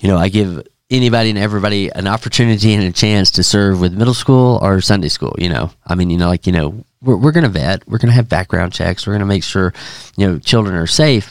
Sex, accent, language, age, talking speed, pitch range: male, American, English, 40-59, 260 wpm, 95-120 Hz